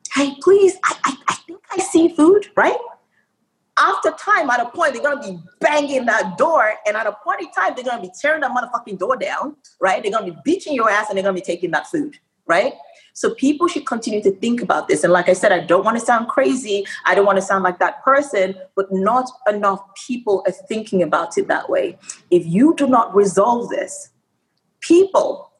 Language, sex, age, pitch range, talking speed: English, female, 30-49, 195-285 Hz, 225 wpm